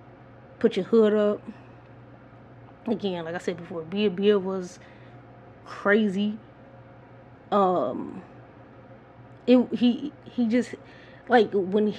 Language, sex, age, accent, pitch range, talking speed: English, female, 20-39, American, 175-230 Hz, 100 wpm